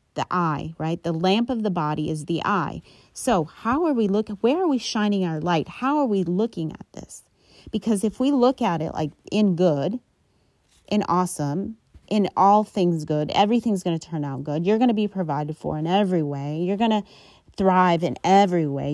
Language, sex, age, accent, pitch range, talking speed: English, female, 30-49, American, 165-210 Hz, 205 wpm